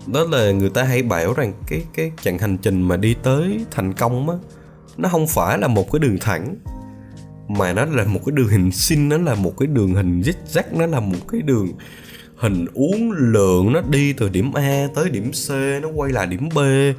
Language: Vietnamese